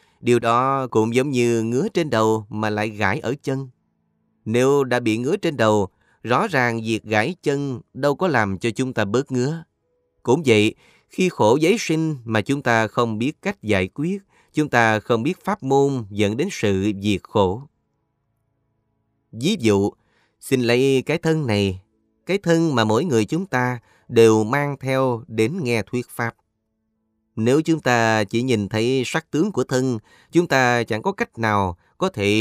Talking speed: 180 wpm